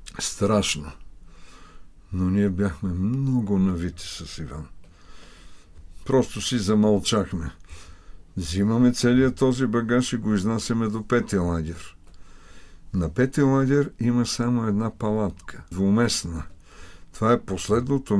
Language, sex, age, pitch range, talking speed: Bulgarian, male, 60-79, 85-115 Hz, 105 wpm